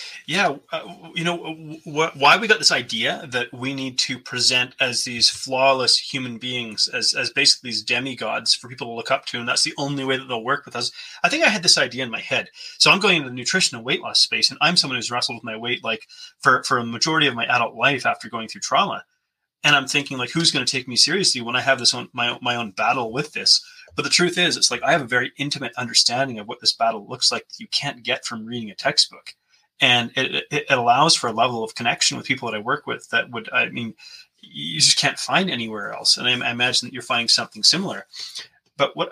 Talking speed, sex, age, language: 250 wpm, male, 30-49, English